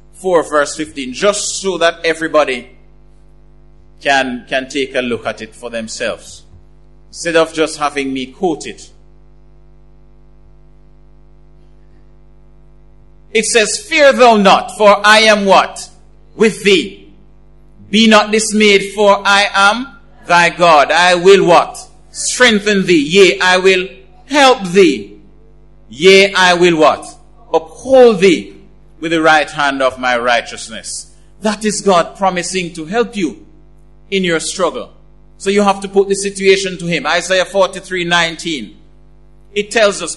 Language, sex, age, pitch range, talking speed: English, male, 50-69, 170-210 Hz, 135 wpm